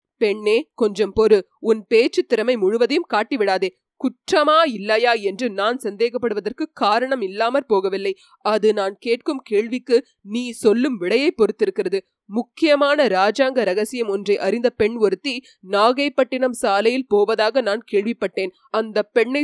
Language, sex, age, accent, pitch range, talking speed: Tamil, female, 30-49, native, 205-255 Hz, 115 wpm